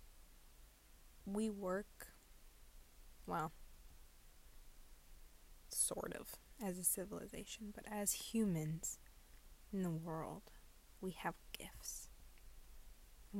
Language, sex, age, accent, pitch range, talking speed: English, female, 20-39, American, 165-205 Hz, 80 wpm